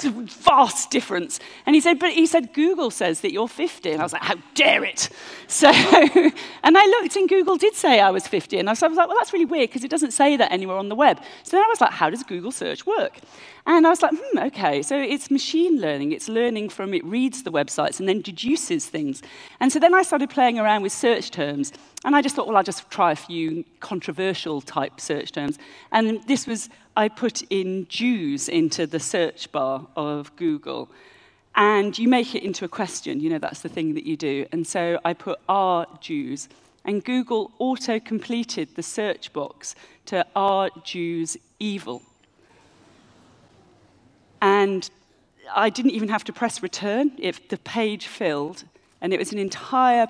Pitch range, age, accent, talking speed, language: 180-285 Hz, 40-59, British, 200 wpm, English